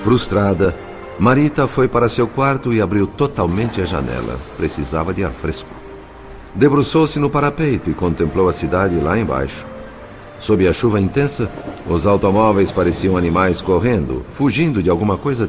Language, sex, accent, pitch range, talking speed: Portuguese, male, Brazilian, 80-120 Hz, 145 wpm